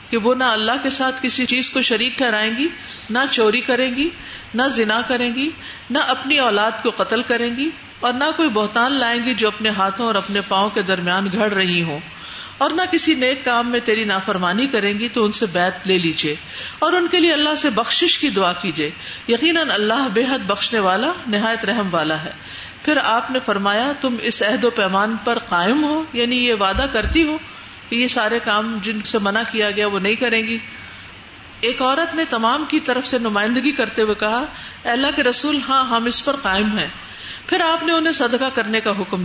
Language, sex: Urdu, female